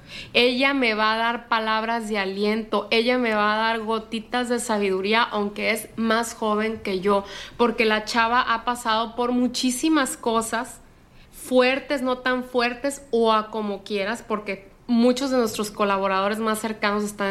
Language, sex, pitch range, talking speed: Spanish, female, 205-240 Hz, 160 wpm